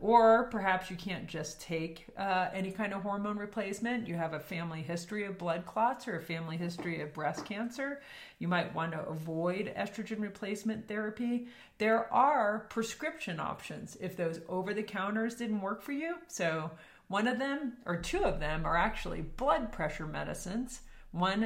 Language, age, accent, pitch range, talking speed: English, 40-59, American, 165-210 Hz, 170 wpm